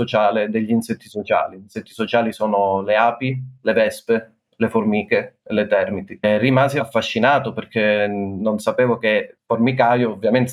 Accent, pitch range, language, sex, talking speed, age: native, 110-125 Hz, Italian, male, 135 wpm, 30-49